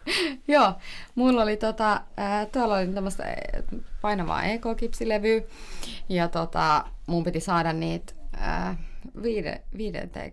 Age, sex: 30-49, female